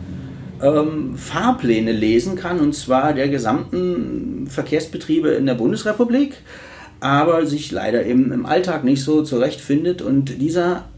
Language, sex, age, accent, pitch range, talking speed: German, male, 30-49, German, 115-155 Hz, 120 wpm